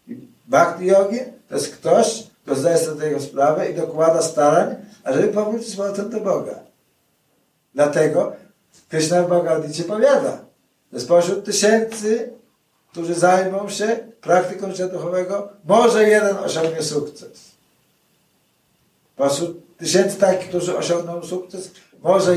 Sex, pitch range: male, 165-205 Hz